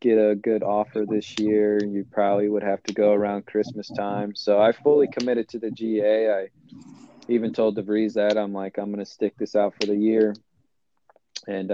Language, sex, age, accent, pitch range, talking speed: English, male, 20-39, American, 100-110 Hz, 200 wpm